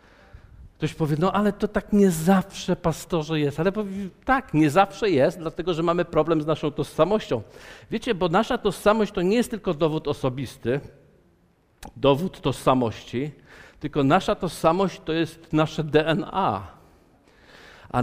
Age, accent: 50-69, native